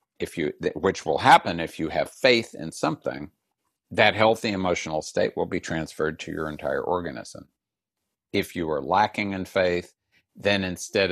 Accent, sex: American, male